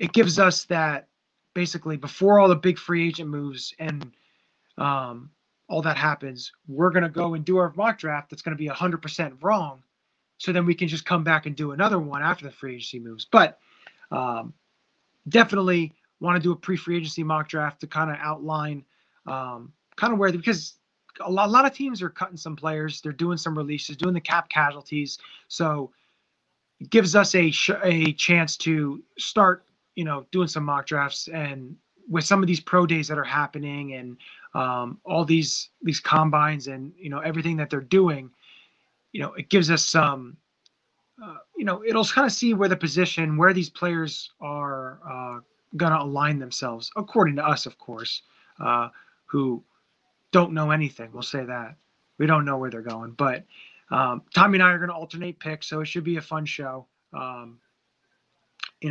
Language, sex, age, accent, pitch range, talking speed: English, male, 20-39, American, 145-175 Hz, 190 wpm